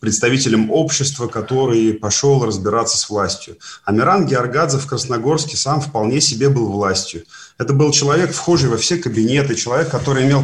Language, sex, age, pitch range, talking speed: Russian, male, 30-49, 110-135 Hz, 150 wpm